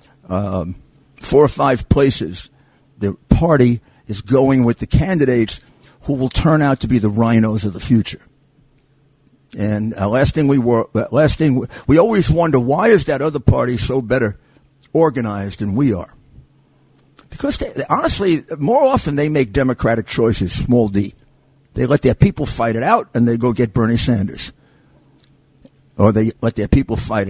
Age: 50-69